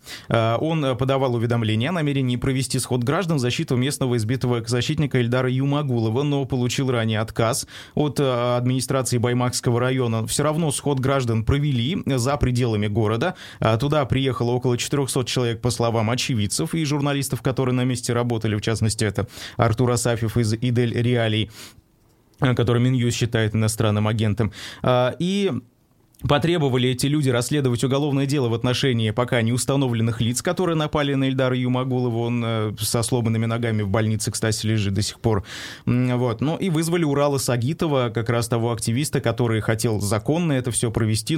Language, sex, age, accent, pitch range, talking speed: Russian, male, 20-39, native, 115-135 Hz, 150 wpm